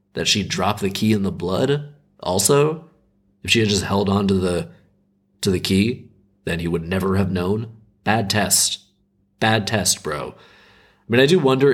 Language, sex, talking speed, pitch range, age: English, male, 185 wpm, 95-115 Hz, 20-39